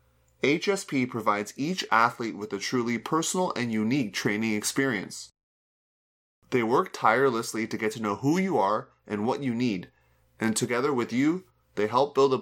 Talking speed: 165 wpm